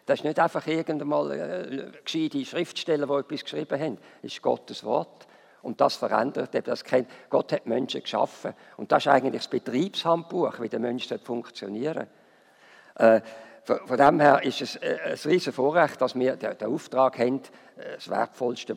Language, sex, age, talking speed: German, male, 50-69, 155 wpm